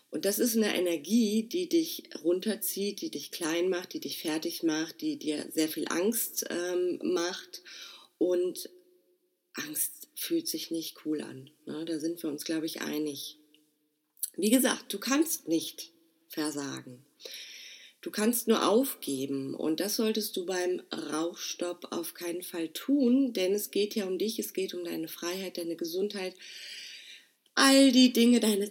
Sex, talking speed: female, 155 wpm